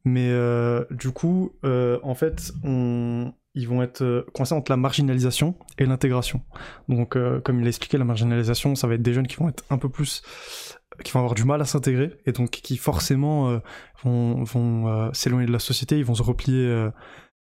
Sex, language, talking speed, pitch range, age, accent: male, French, 205 wpm, 120-140 Hz, 20-39, French